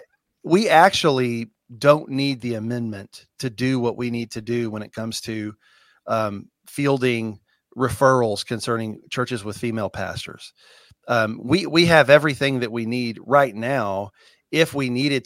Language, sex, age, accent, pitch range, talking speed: English, male, 40-59, American, 110-135 Hz, 150 wpm